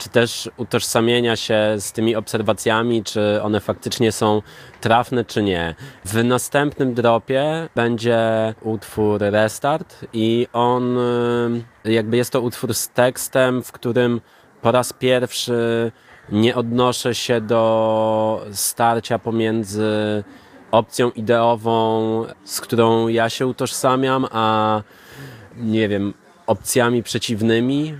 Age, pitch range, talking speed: 20-39, 110-130 Hz, 110 wpm